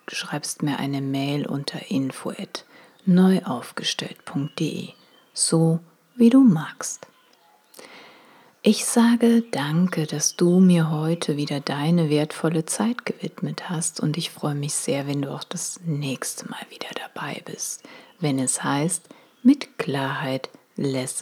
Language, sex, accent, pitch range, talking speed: German, female, German, 145-190 Hz, 120 wpm